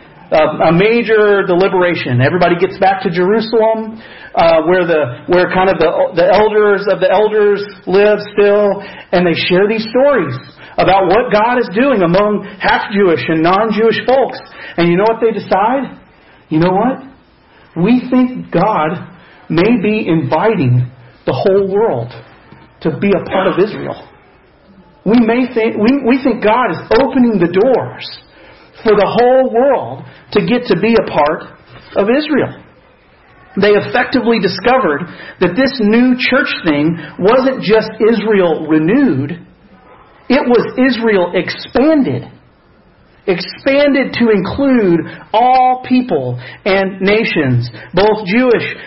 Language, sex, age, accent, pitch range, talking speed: English, male, 40-59, American, 185-245 Hz, 135 wpm